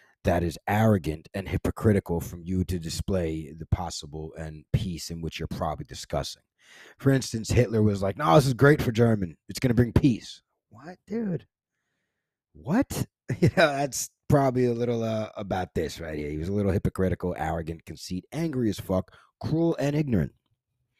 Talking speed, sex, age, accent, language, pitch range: 170 wpm, male, 30-49, American, English, 90-125 Hz